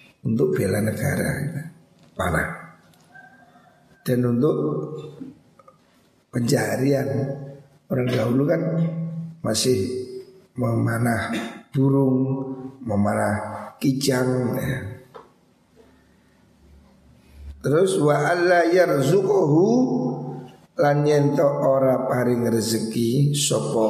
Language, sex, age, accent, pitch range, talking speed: Indonesian, male, 50-69, native, 120-145 Hz, 65 wpm